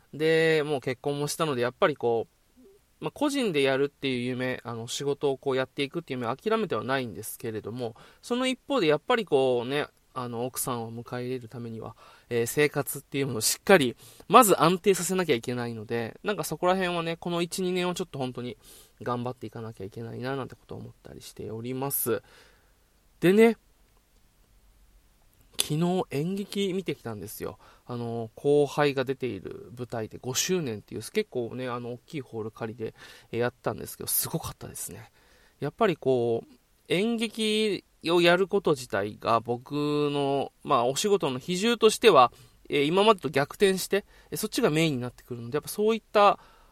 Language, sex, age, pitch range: Japanese, male, 20-39, 120-180 Hz